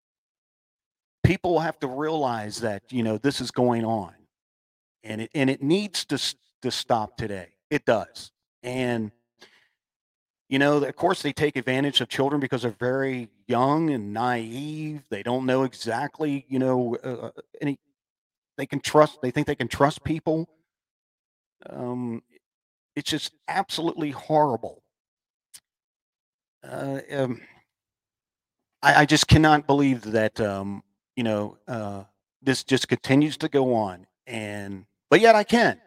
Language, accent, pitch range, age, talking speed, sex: English, American, 120-165 Hz, 40-59, 140 wpm, male